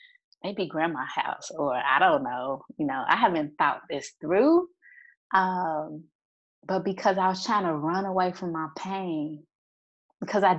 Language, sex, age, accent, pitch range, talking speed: English, female, 20-39, American, 160-205 Hz, 160 wpm